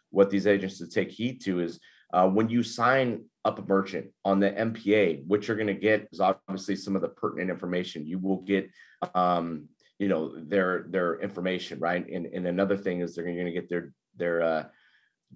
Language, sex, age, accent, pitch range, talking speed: English, male, 30-49, American, 90-105 Hz, 205 wpm